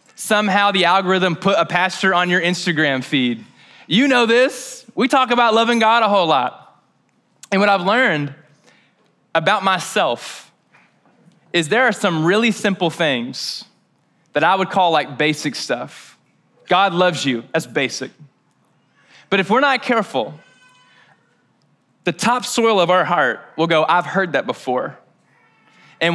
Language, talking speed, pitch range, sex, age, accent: English, 145 wpm, 165-215 Hz, male, 20-39, American